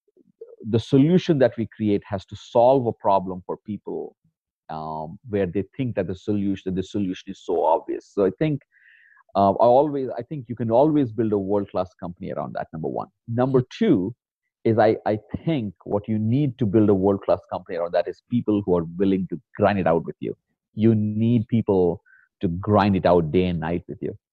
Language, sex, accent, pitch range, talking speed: English, male, Indian, 95-120 Hz, 200 wpm